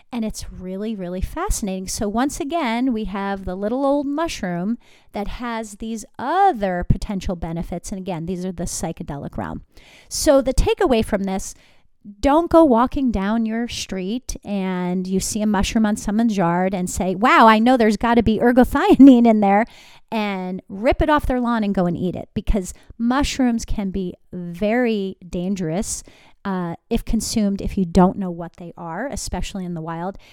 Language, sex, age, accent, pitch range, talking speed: English, female, 40-59, American, 185-240 Hz, 175 wpm